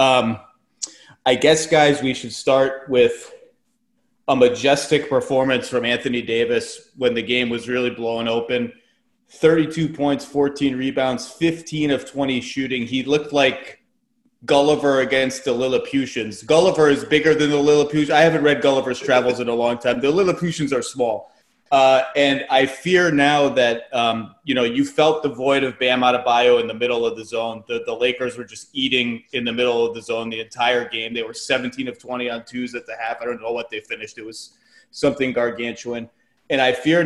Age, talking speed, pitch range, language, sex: 30-49, 185 wpm, 120-150 Hz, English, male